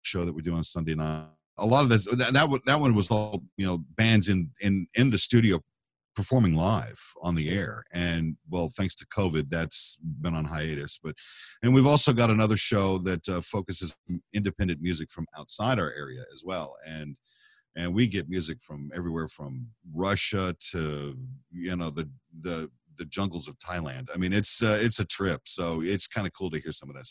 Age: 50-69